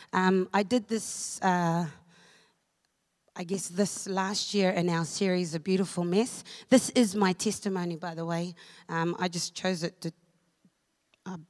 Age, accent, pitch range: 30-49, Australian, 170-210 Hz